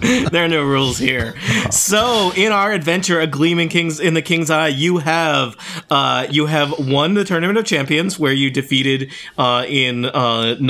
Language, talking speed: English, 180 wpm